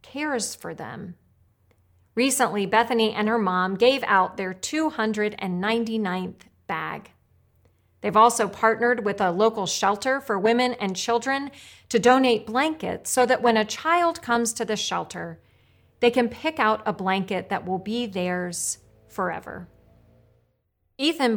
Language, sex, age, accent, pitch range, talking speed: English, female, 40-59, American, 185-235 Hz, 135 wpm